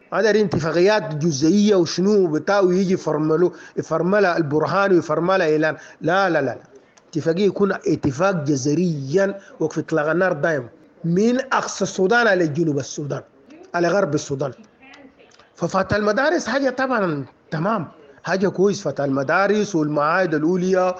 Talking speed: 115 wpm